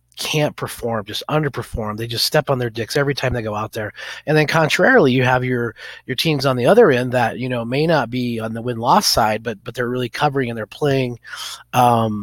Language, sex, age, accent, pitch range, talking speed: English, male, 30-49, American, 115-135 Hz, 230 wpm